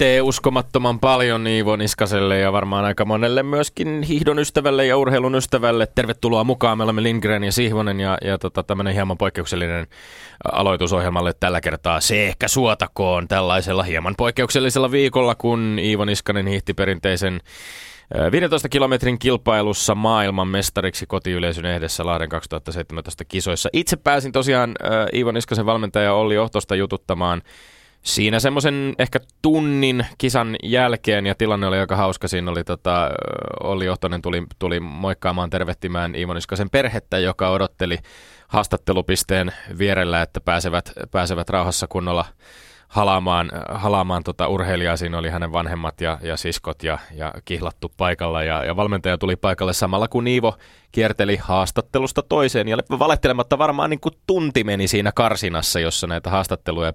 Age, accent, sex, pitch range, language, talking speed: 20-39, native, male, 90-115 Hz, Finnish, 135 wpm